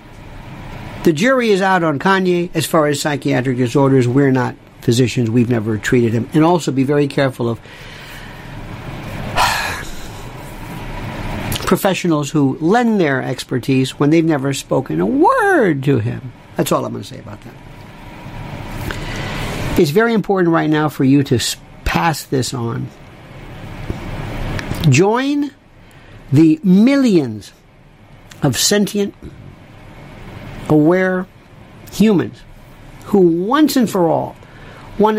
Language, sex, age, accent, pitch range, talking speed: English, male, 60-79, American, 125-190 Hz, 120 wpm